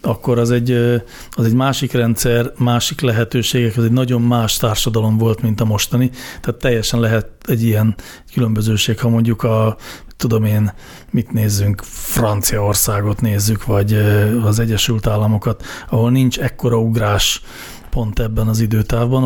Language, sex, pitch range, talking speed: Hungarian, male, 110-125 Hz, 135 wpm